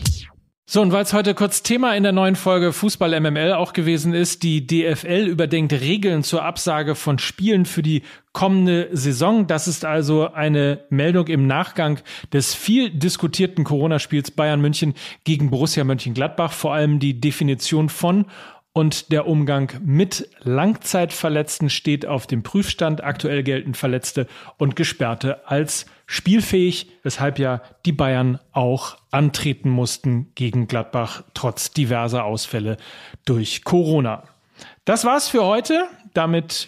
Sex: male